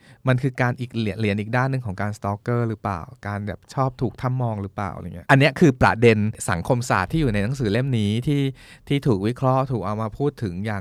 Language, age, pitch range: Thai, 20-39, 105-135 Hz